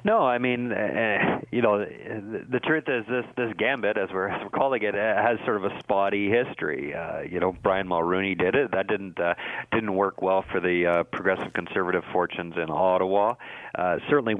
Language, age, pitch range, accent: English, 40-59, 85-100 Hz, American